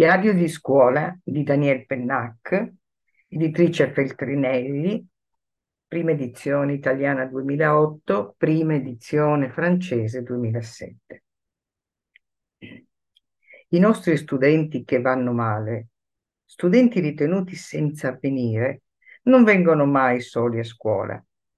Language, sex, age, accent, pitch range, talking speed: Italian, female, 50-69, native, 130-180 Hz, 90 wpm